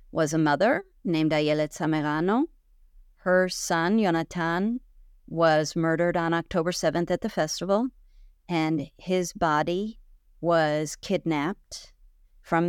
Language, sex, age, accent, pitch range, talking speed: English, female, 40-59, American, 155-200 Hz, 110 wpm